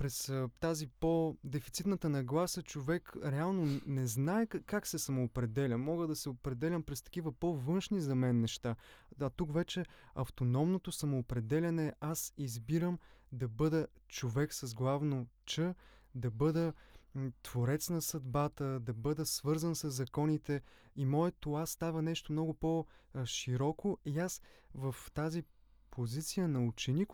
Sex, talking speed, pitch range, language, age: male, 130 wpm, 130-160 Hz, Bulgarian, 20-39